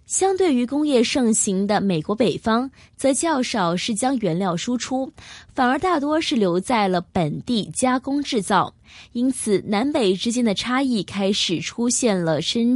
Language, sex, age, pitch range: Chinese, female, 20-39, 185-255 Hz